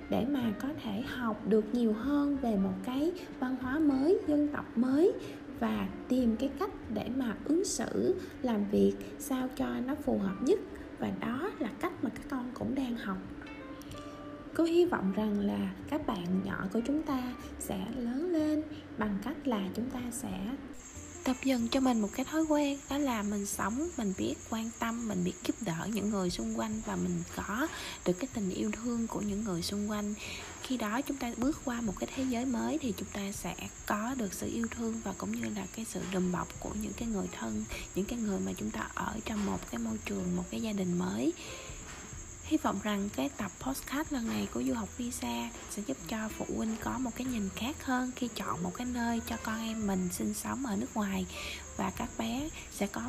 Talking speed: 215 wpm